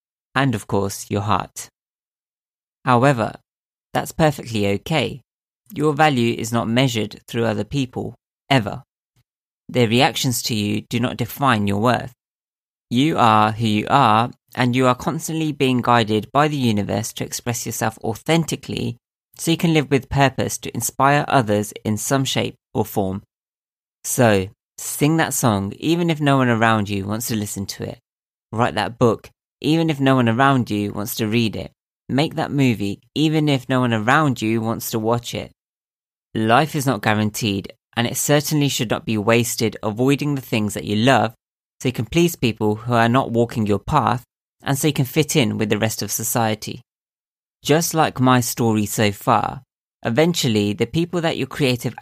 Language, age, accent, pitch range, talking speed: English, 20-39, British, 110-140 Hz, 175 wpm